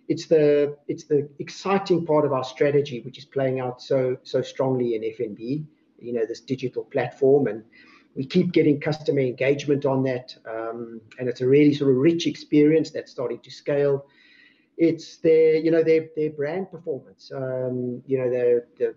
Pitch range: 130-165 Hz